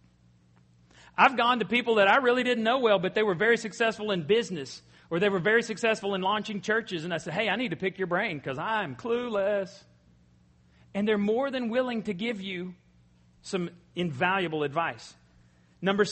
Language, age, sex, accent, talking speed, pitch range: English, 40-59, male, American, 185 wpm, 165-220 Hz